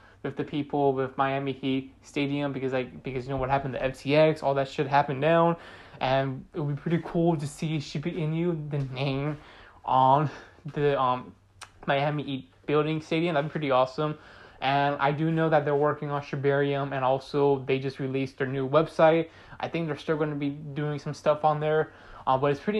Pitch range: 135-155 Hz